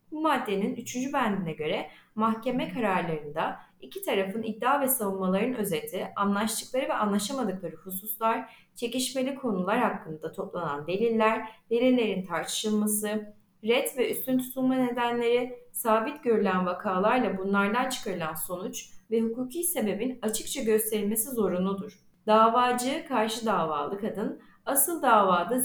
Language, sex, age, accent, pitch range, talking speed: Turkish, female, 30-49, native, 200-255 Hz, 110 wpm